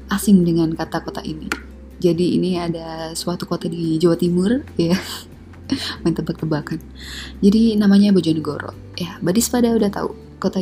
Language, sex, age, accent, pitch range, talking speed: Indonesian, female, 20-39, native, 165-200 Hz, 140 wpm